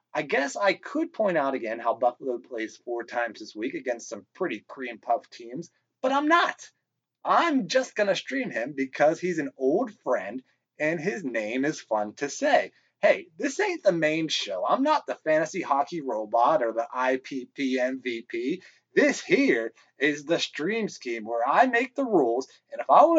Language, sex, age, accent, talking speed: English, male, 30-49, American, 185 wpm